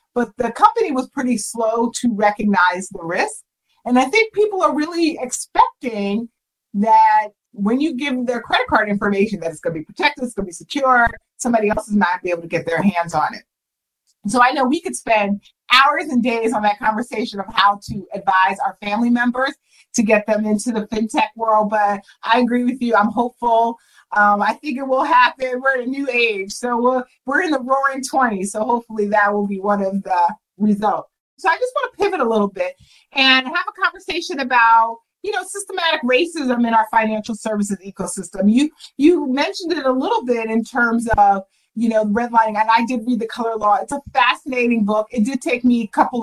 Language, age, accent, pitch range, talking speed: English, 30-49, American, 210-260 Hz, 215 wpm